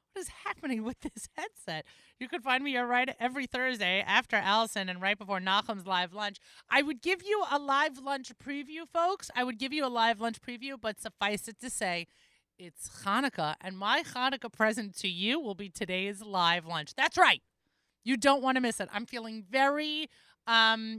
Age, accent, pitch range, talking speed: 30-49, American, 205-275 Hz, 195 wpm